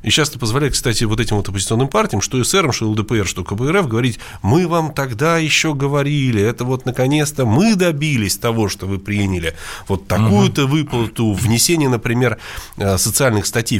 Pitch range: 95-130 Hz